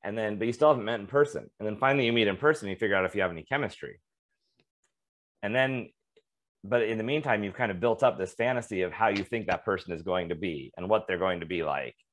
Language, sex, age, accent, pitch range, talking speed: English, male, 30-49, American, 90-130 Hz, 270 wpm